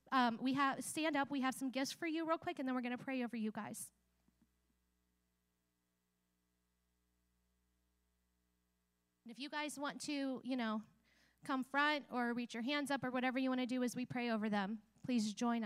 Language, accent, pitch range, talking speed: English, American, 165-270 Hz, 190 wpm